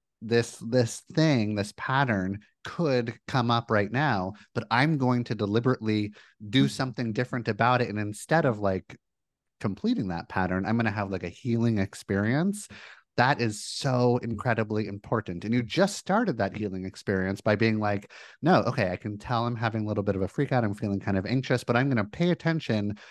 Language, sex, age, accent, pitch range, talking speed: English, male, 30-49, American, 105-125 Hz, 195 wpm